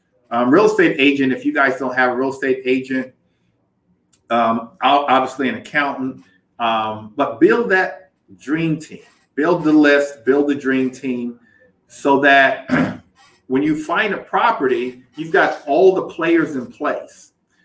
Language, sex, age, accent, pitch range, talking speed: English, male, 50-69, American, 130-165 Hz, 150 wpm